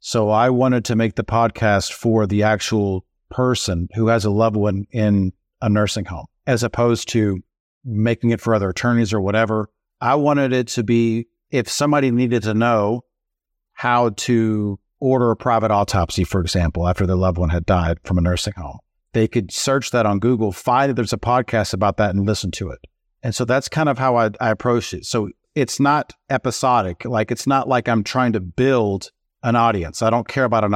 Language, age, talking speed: English, 50-69, 205 wpm